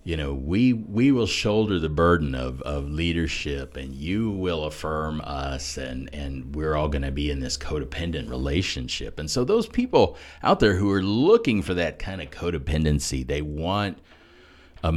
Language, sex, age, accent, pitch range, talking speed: English, male, 40-59, American, 75-90 Hz, 170 wpm